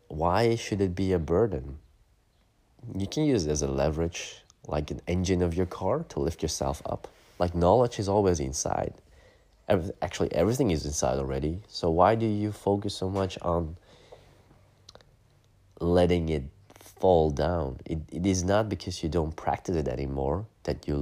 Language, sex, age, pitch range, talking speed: English, male, 30-49, 75-95 Hz, 165 wpm